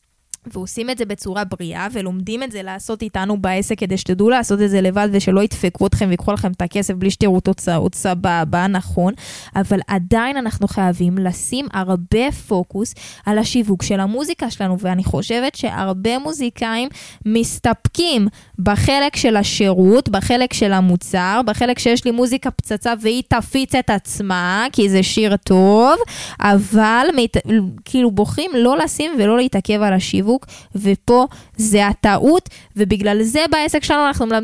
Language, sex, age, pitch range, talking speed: Hebrew, female, 10-29, 200-255 Hz, 140 wpm